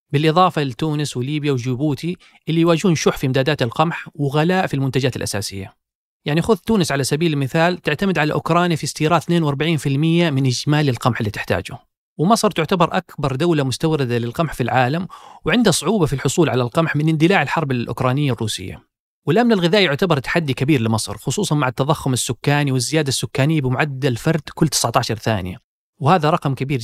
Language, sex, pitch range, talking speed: Arabic, male, 130-165 Hz, 155 wpm